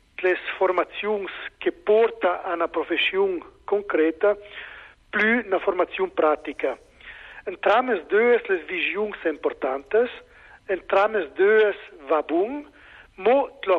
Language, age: Italian, 40-59